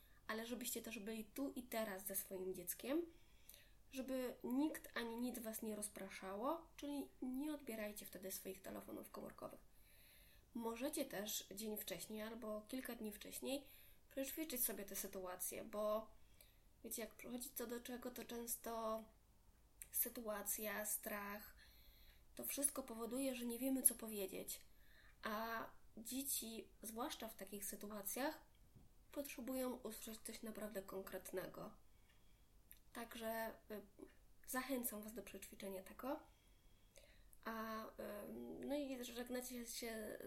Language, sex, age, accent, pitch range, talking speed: Polish, female, 20-39, native, 205-245 Hz, 115 wpm